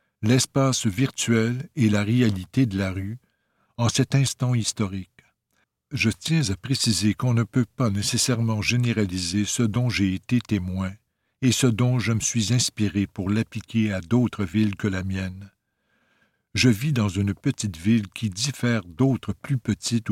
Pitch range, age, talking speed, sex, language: 100-125 Hz, 60-79, 160 wpm, male, French